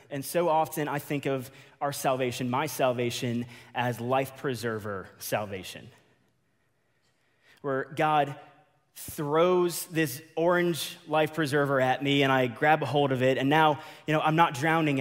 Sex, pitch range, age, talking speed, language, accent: male, 115-150 Hz, 20-39, 150 wpm, English, American